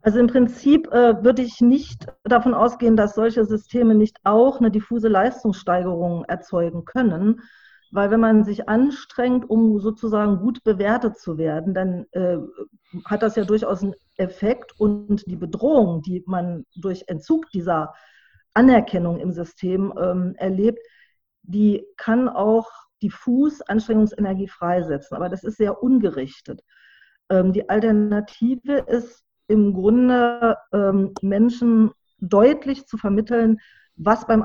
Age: 40-59